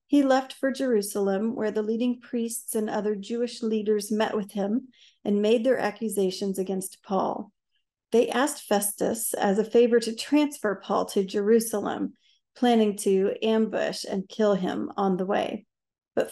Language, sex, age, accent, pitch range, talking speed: English, female, 40-59, American, 205-245 Hz, 155 wpm